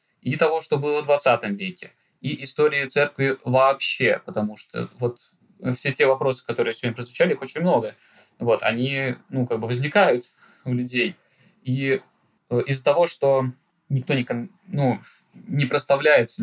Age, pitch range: 20-39, 125-155 Hz